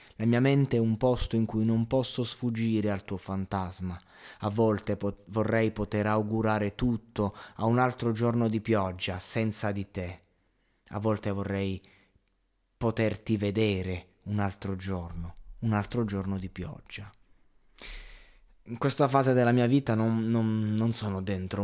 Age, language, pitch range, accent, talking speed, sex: 20-39, Italian, 100-120 Hz, native, 145 wpm, male